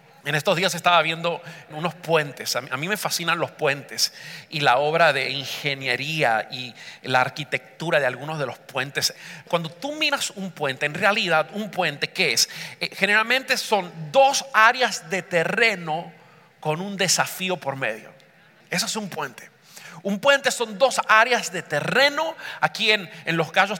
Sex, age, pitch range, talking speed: male, 40-59, 165-220 Hz, 160 wpm